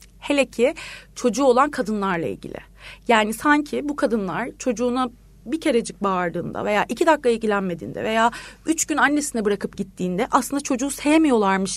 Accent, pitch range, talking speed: native, 220-285 Hz, 140 wpm